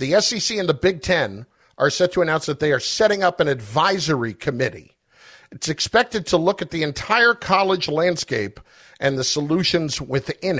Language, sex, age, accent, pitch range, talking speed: English, male, 50-69, American, 145-195 Hz, 175 wpm